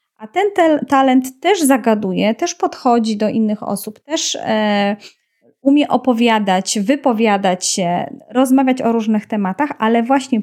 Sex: female